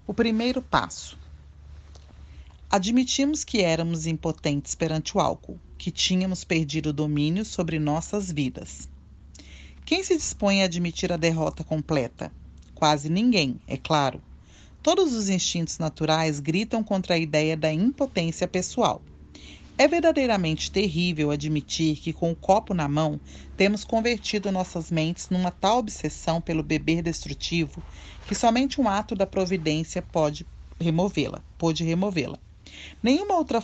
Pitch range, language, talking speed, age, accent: 150-200 Hz, Portuguese, 130 wpm, 40-59, Brazilian